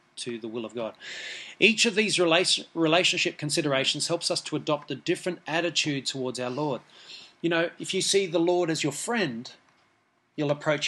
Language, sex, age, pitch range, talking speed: English, male, 30-49, 140-175 Hz, 175 wpm